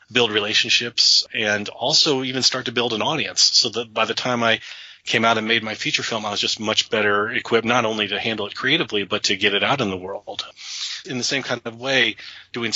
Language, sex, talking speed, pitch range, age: English, male, 235 wpm, 105-130 Hz, 30-49